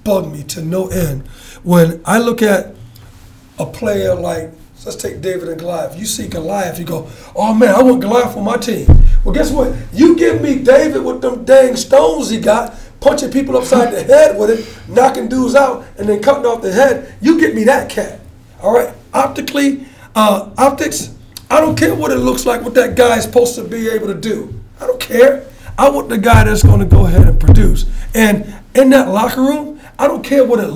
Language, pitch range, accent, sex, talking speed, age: English, 195-260 Hz, American, male, 215 wpm, 40-59